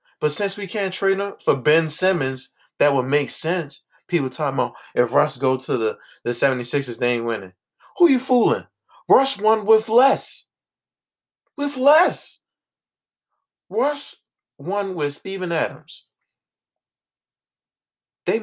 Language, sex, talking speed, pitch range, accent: English, male, 135 wpm, 140-195 Hz, American